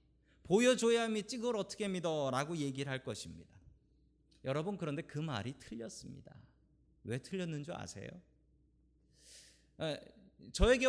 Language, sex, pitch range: Korean, male, 105-170 Hz